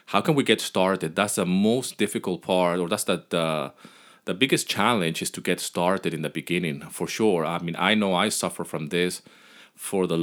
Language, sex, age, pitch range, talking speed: English, male, 30-49, 85-100 Hz, 210 wpm